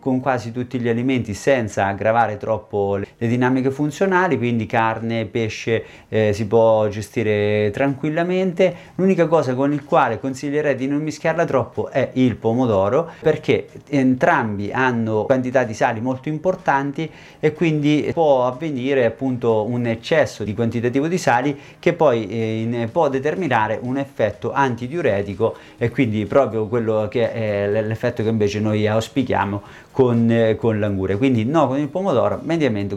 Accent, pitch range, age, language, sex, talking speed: native, 110-140 Hz, 30-49, Italian, male, 145 wpm